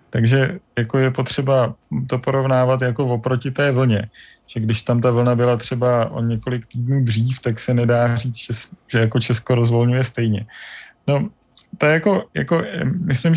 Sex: male